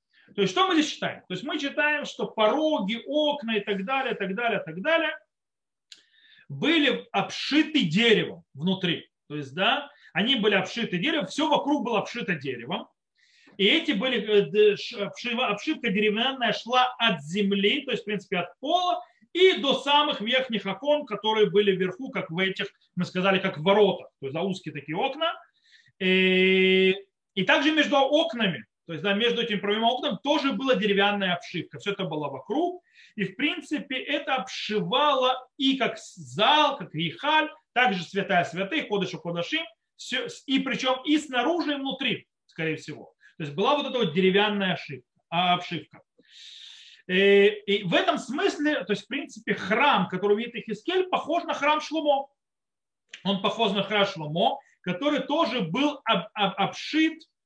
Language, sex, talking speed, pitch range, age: Russian, male, 160 wpm, 195-290 Hz, 30-49